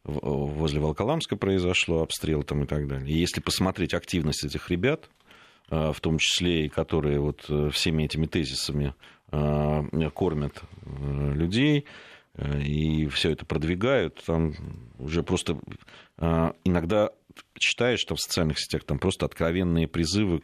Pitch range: 75-90 Hz